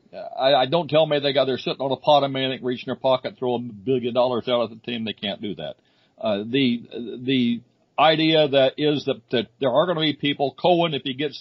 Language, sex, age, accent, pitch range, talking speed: English, male, 60-79, American, 125-145 Hz, 245 wpm